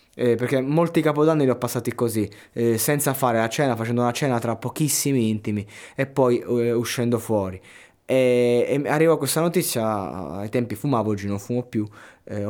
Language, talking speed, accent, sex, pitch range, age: Italian, 185 wpm, native, male, 110-130 Hz, 20-39